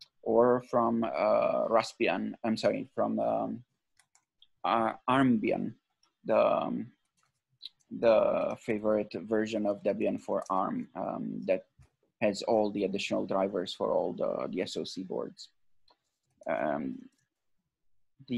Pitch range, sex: 115-130 Hz, male